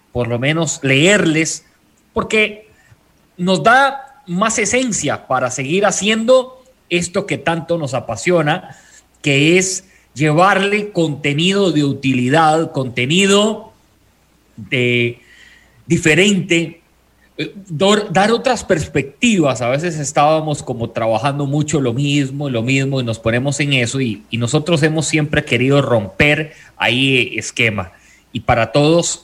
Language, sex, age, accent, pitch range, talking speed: English, male, 30-49, Mexican, 125-185 Hz, 115 wpm